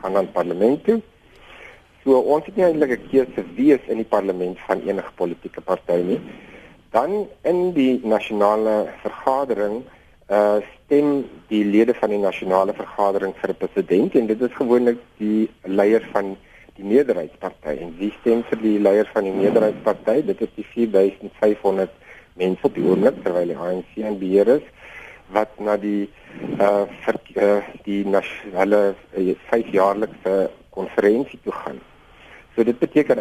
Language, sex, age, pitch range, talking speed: Dutch, male, 50-69, 95-120 Hz, 145 wpm